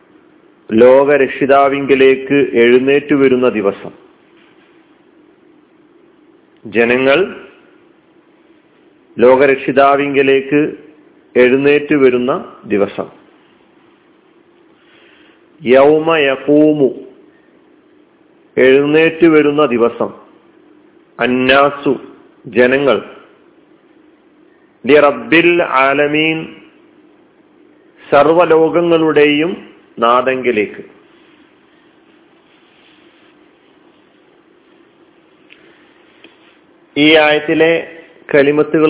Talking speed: 30 wpm